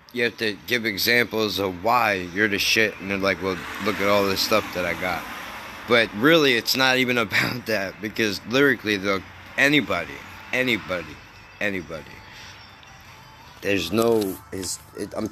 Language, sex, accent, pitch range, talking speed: English, male, American, 95-115 Hz, 150 wpm